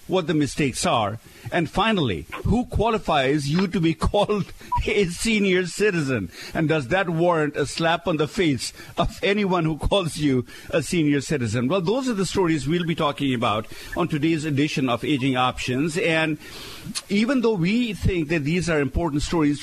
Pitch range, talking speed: 135-185 Hz, 175 wpm